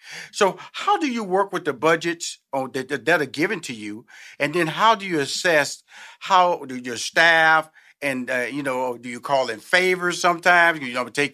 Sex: male